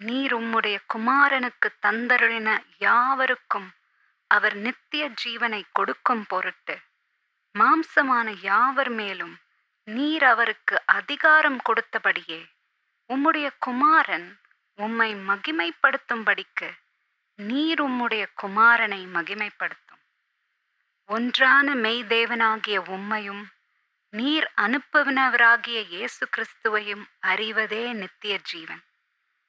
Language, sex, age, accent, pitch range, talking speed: Tamil, female, 20-39, native, 205-260 Hz, 70 wpm